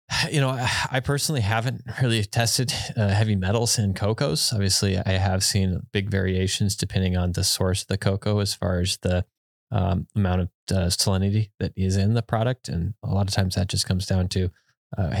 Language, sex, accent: English, male, American